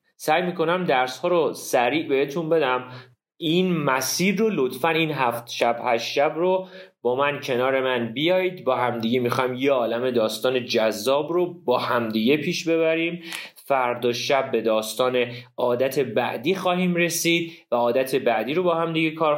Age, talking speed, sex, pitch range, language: 30-49, 150 wpm, male, 130-185 Hz, Persian